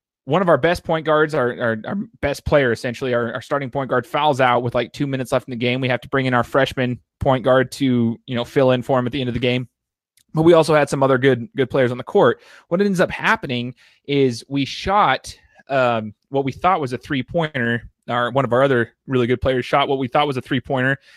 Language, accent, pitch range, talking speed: English, American, 125-150 Hz, 255 wpm